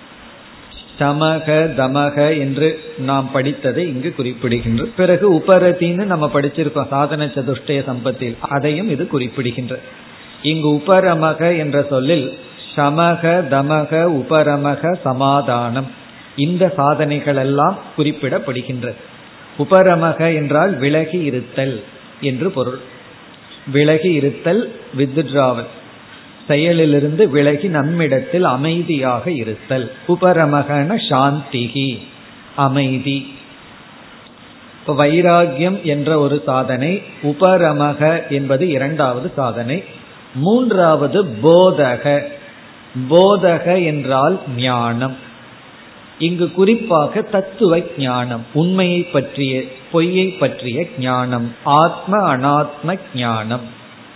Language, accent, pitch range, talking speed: Tamil, native, 135-170 Hz, 75 wpm